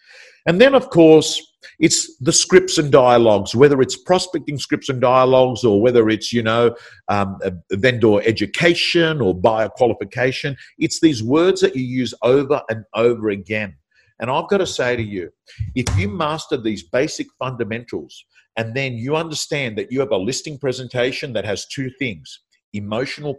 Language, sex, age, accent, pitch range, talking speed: English, male, 50-69, Australian, 120-165 Hz, 160 wpm